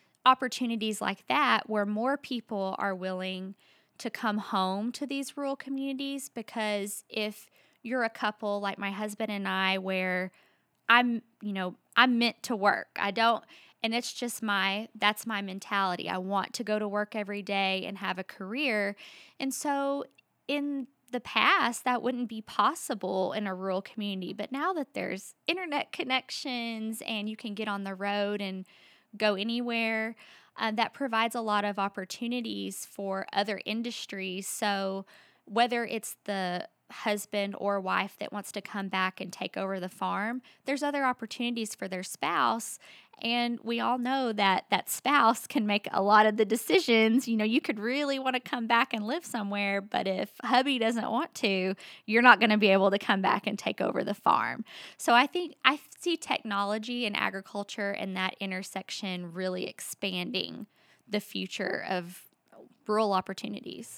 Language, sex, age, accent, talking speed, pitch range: English, female, 20-39, American, 170 wpm, 195-240 Hz